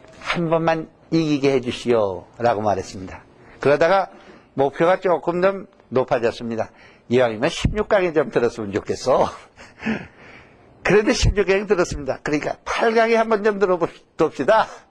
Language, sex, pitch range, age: Korean, male, 120-190 Hz, 60-79